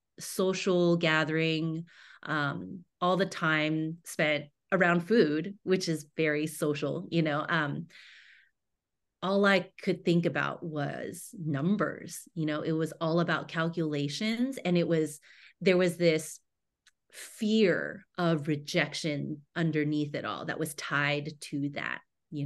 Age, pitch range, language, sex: 30-49, 150-180 Hz, English, female